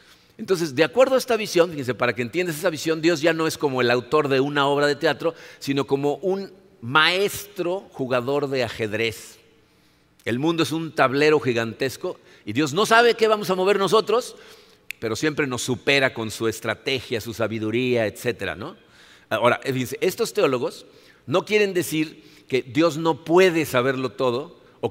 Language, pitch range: Spanish, 130-170 Hz